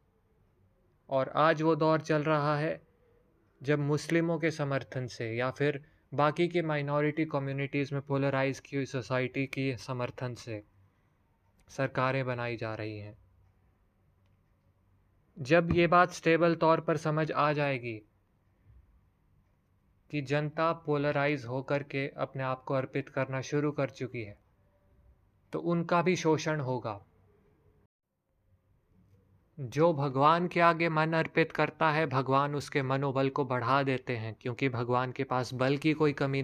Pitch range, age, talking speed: 110-150 Hz, 20-39, 135 wpm